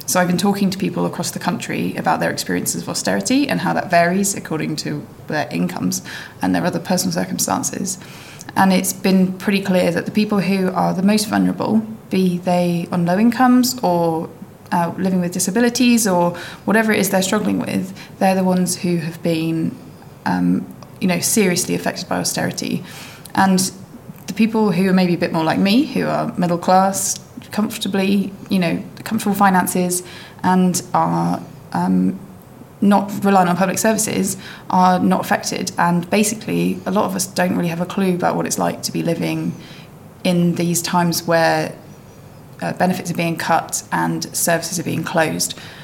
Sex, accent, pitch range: female, British, 170-195 Hz